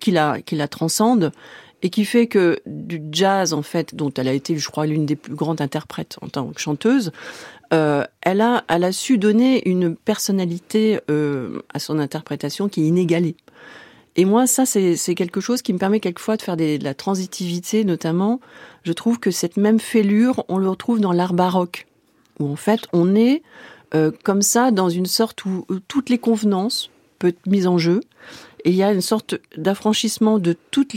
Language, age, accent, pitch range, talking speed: French, 40-59, French, 155-210 Hz, 200 wpm